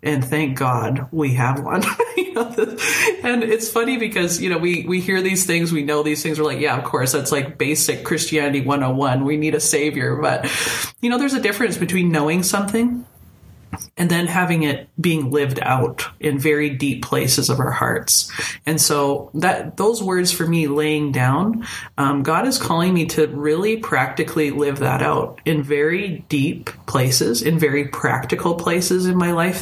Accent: American